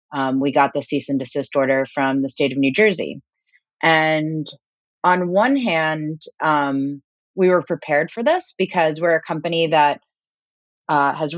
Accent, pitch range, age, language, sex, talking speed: American, 145-185 Hz, 30-49, English, female, 165 wpm